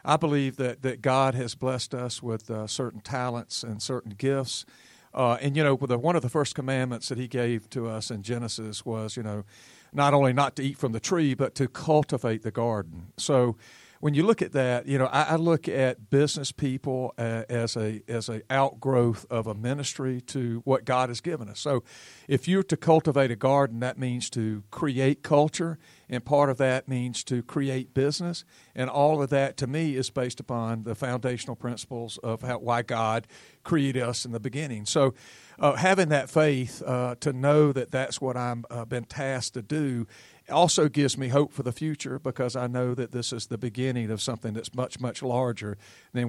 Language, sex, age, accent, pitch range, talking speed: English, male, 50-69, American, 115-140 Hz, 200 wpm